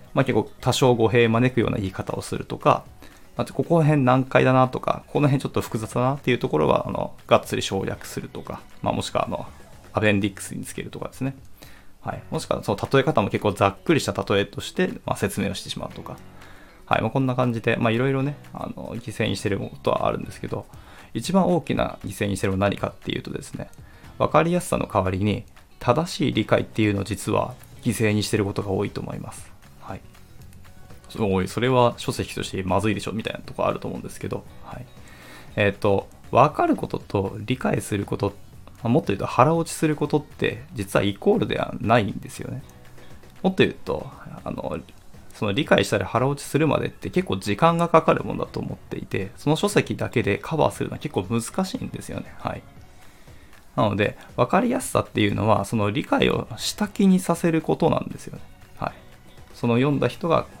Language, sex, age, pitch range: Japanese, male, 20-39, 100-135 Hz